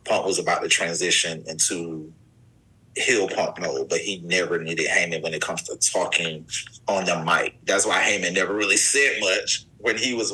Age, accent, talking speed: 30-49, American, 185 wpm